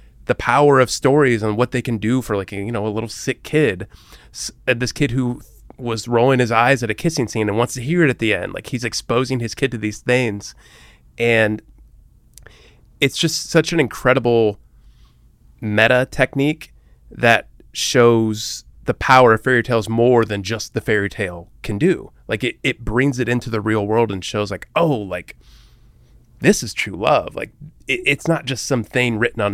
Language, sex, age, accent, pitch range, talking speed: English, male, 30-49, American, 105-130 Hz, 190 wpm